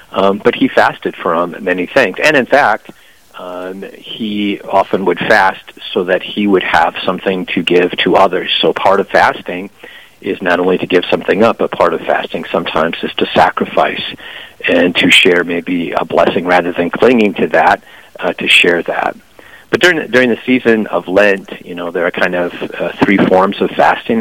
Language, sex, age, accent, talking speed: English, male, 50-69, American, 190 wpm